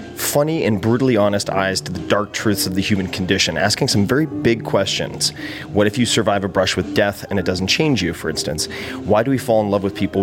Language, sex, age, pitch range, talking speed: English, male, 30-49, 95-115 Hz, 240 wpm